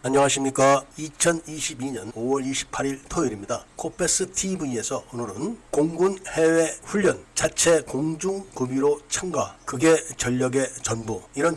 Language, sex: Korean, male